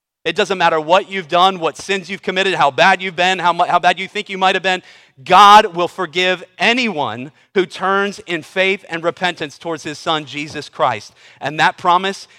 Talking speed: 195 wpm